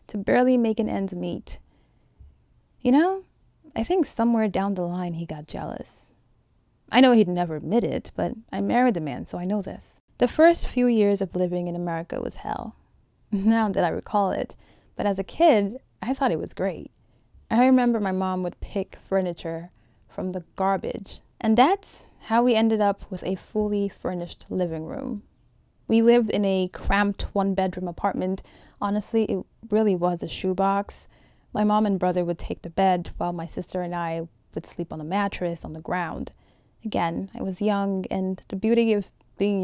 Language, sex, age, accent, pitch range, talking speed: English, female, 20-39, American, 180-225 Hz, 185 wpm